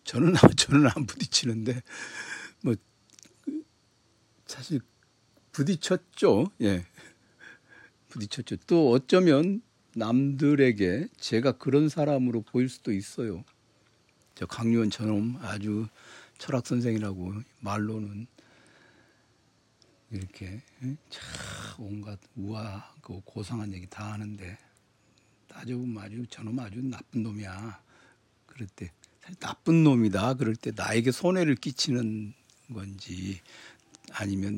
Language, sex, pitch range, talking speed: English, male, 105-130 Hz, 85 wpm